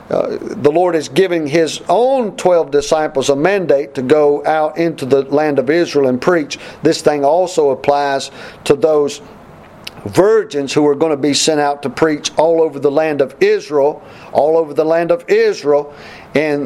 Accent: American